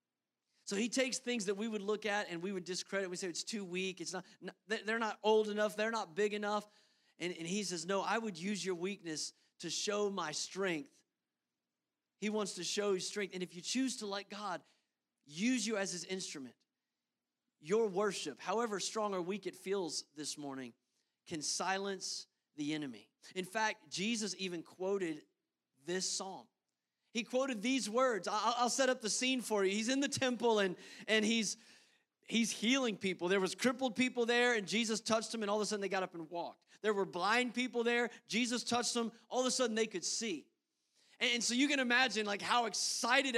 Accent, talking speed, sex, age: American, 200 wpm, male, 40-59